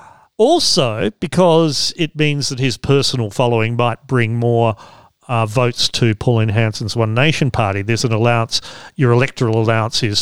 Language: English